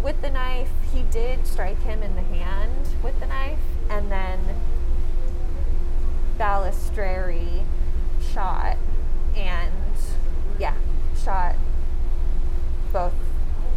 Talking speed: 90 wpm